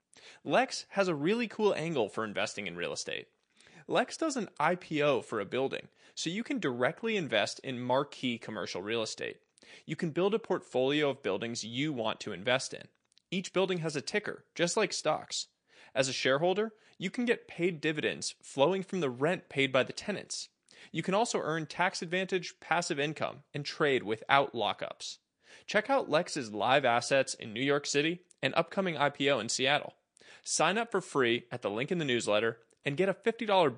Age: 20-39